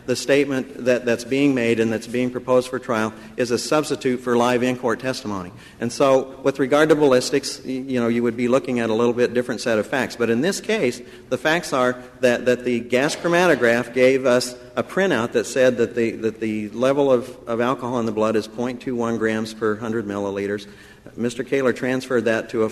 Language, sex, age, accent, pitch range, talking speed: English, male, 50-69, American, 115-135 Hz, 215 wpm